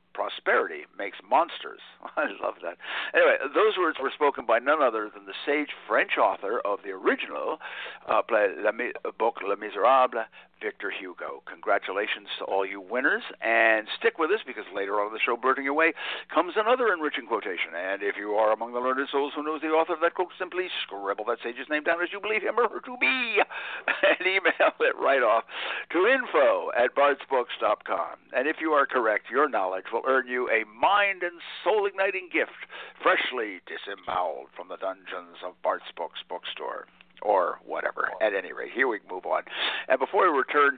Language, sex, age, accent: English, male, 60-79, American